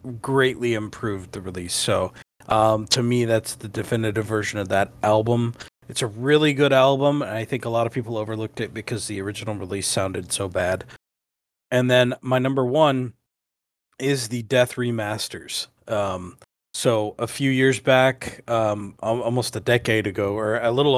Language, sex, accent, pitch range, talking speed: English, male, American, 110-130 Hz, 170 wpm